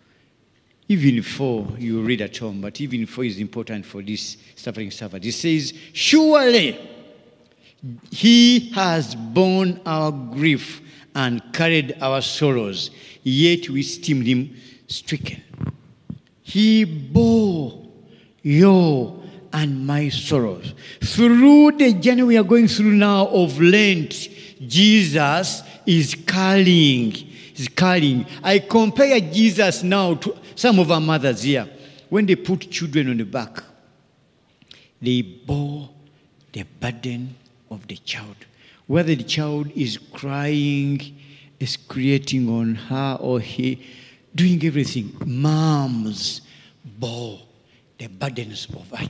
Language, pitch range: English, 125-180 Hz